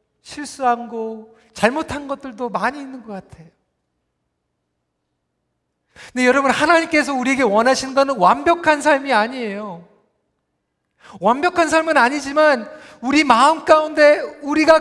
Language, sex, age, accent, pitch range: Korean, male, 40-59, native, 225-295 Hz